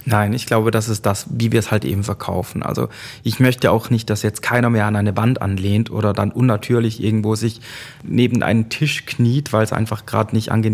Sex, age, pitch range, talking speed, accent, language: male, 30-49, 105-120 Hz, 220 wpm, German, German